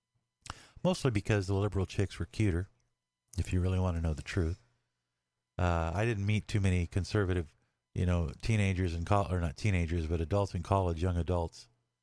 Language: English